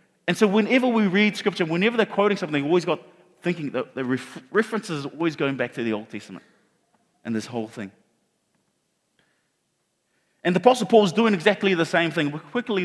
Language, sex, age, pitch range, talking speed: English, male, 30-49, 150-205 Hz, 195 wpm